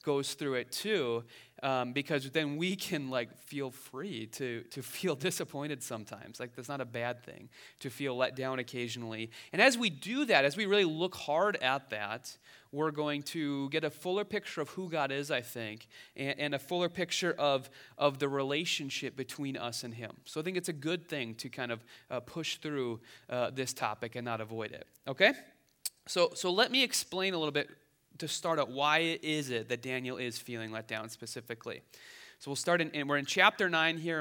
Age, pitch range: 30-49, 135-180 Hz